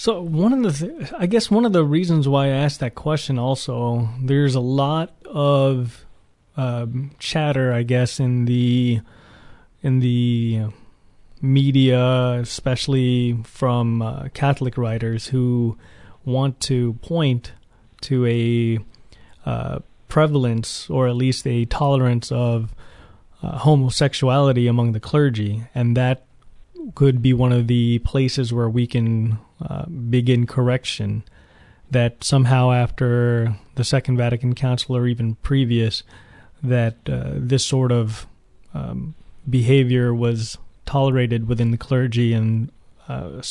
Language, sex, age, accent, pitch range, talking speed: English, male, 30-49, American, 115-135 Hz, 130 wpm